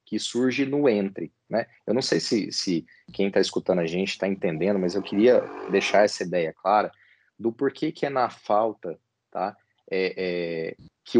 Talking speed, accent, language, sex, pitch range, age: 165 wpm, Brazilian, Portuguese, male, 105-150 Hz, 30-49